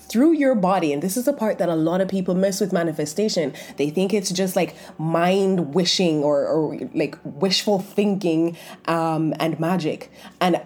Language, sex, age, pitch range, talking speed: English, female, 20-39, 160-195 Hz, 180 wpm